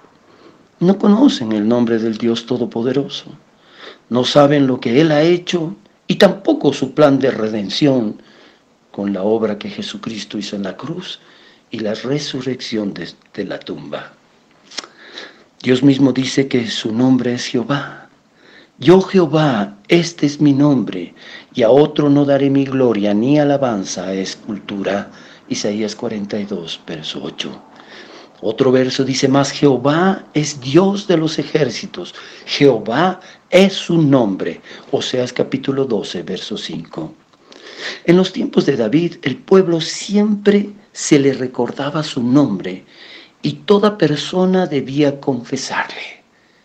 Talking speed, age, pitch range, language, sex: 130 wpm, 50-69, 125-170 Hz, Spanish, male